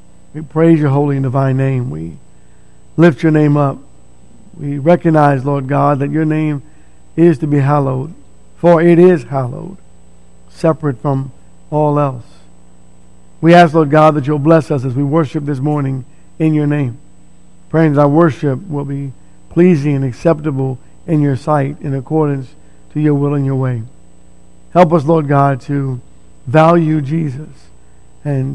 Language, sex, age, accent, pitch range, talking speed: English, male, 50-69, American, 125-160 Hz, 155 wpm